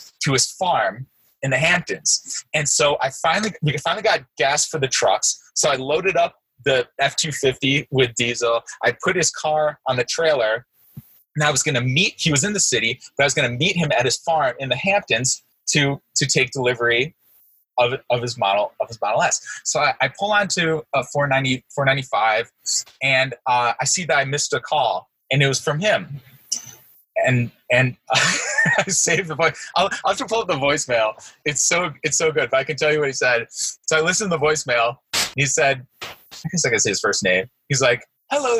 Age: 20-39